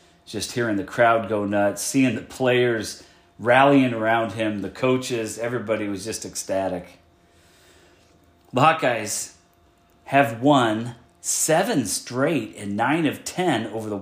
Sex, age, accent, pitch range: male, 30-49, American, 95-125 Hz